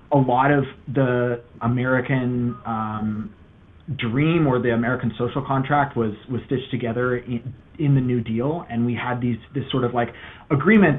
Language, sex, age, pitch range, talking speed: English, male, 30-49, 115-145 Hz, 165 wpm